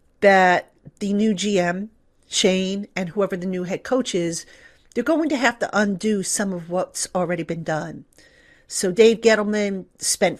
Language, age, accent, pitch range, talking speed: English, 50-69, American, 180-215 Hz, 160 wpm